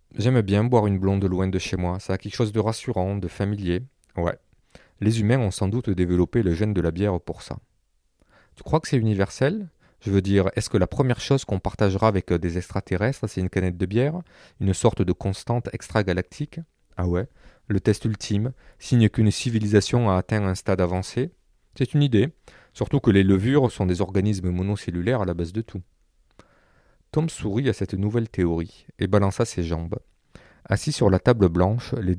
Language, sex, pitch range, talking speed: French, male, 90-115 Hz, 195 wpm